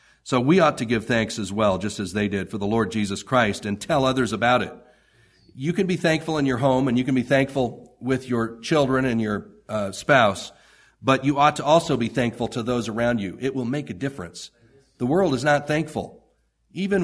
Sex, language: male, English